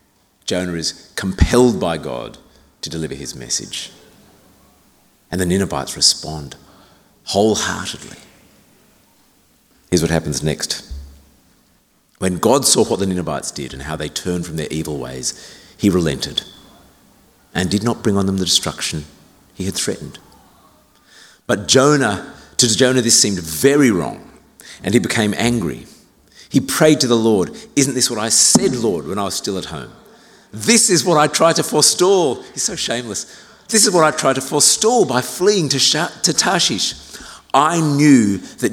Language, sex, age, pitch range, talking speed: English, male, 50-69, 85-125 Hz, 155 wpm